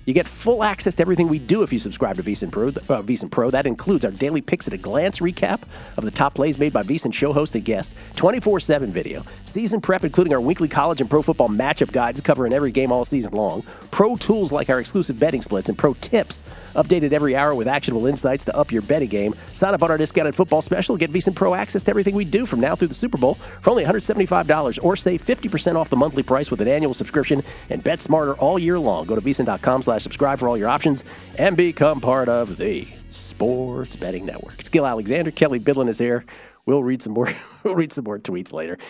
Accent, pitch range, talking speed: American, 120-170 Hz, 235 wpm